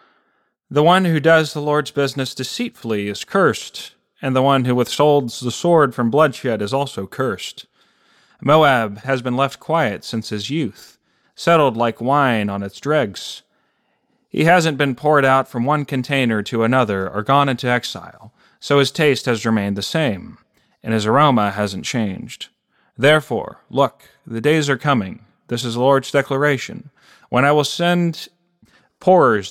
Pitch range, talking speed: 115-150 Hz, 160 wpm